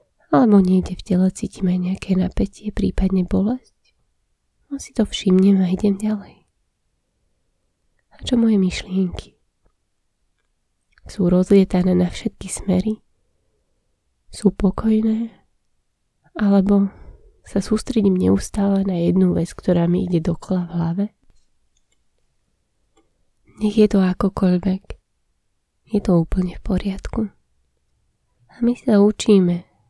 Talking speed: 105 wpm